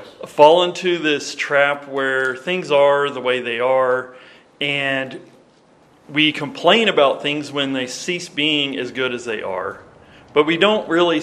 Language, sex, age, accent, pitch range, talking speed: English, male, 40-59, American, 125-165 Hz, 155 wpm